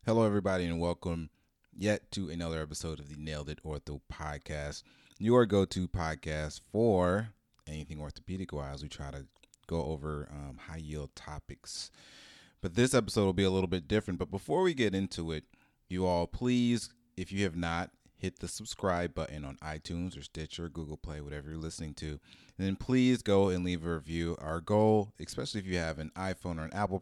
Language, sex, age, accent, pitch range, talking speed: English, male, 30-49, American, 80-95 Hz, 185 wpm